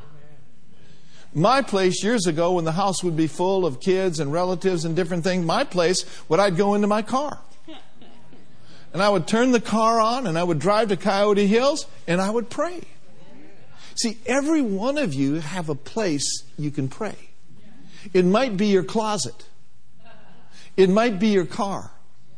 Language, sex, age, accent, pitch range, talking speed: English, male, 50-69, American, 155-215 Hz, 170 wpm